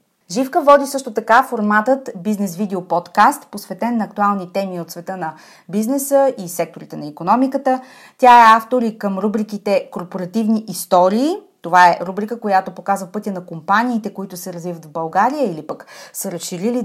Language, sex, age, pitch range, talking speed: Bulgarian, female, 30-49, 180-240 Hz, 160 wpm